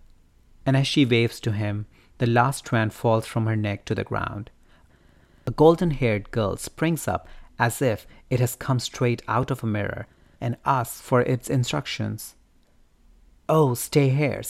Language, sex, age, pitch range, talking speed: English, male, 30-49, 110-135 Hz, 160 wpm